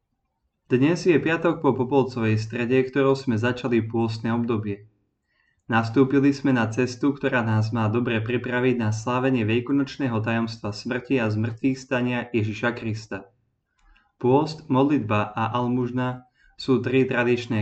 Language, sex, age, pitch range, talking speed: Slovak, male, 20-39, 110-130 Hz, 125 wpm